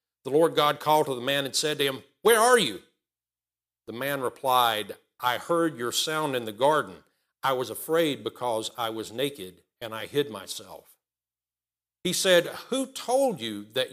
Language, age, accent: English, 50-69, American